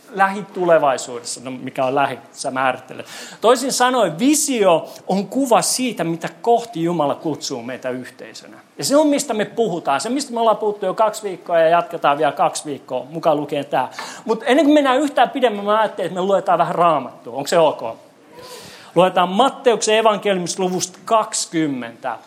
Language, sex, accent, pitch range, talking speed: Finnish, male, native, 175-245 Hz, 160 wpm